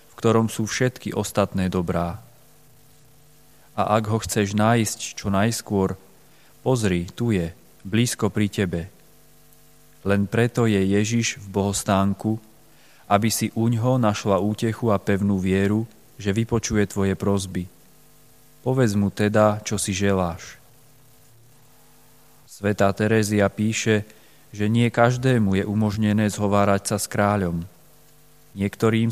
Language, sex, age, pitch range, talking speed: Slovak, male, 30-49, 100-120 Hz, 115 wpm